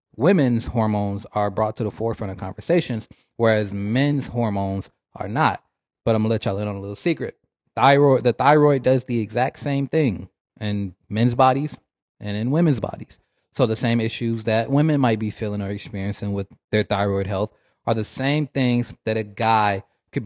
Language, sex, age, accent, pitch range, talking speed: English, male, 20-39, American, 105-125 Hz, 185 wpm